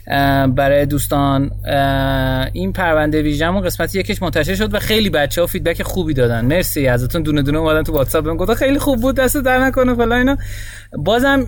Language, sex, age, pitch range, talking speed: Persian, male, 30-49, 115-165 Hz, 160 wpm